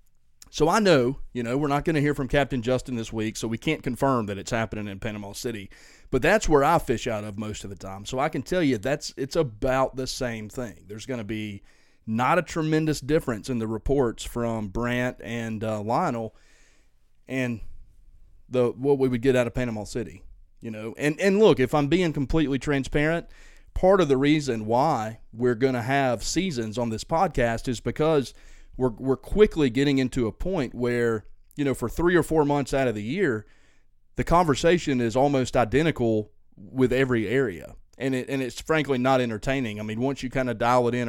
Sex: male